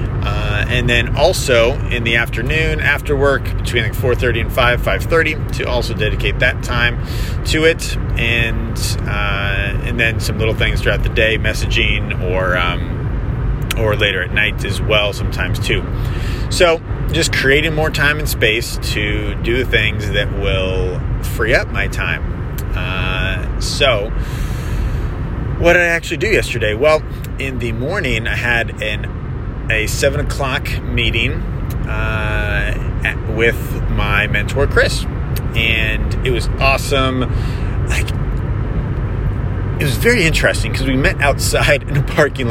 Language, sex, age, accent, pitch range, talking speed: English, male, 30-49, American, 105-125 Hz, 145 wpm